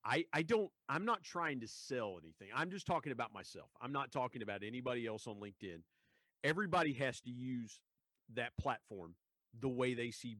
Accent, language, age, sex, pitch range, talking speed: American, English, 50-69, male, 110-150 Hz, 185 wpm